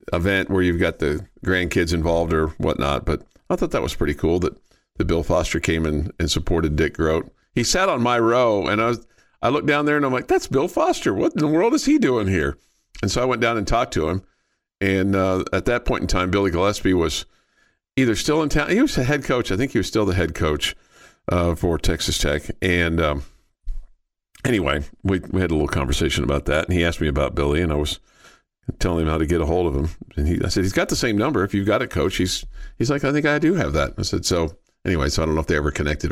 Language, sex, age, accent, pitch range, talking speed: English, male, 50-69, American, 80-110 Hz, 260 wpm